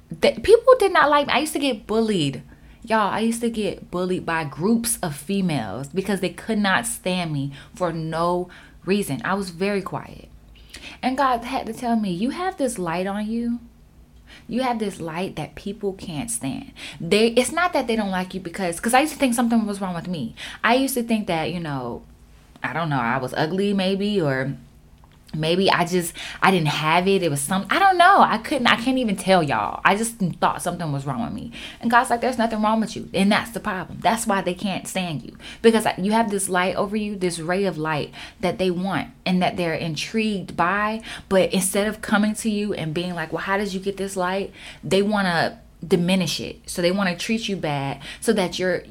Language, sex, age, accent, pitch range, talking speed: English, female, 10-29, American, 165-220 Hz, 225 wpm